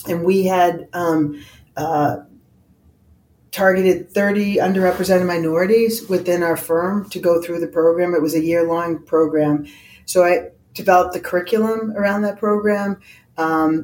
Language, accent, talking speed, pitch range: English, American, 135 wpm, 160-190 Hz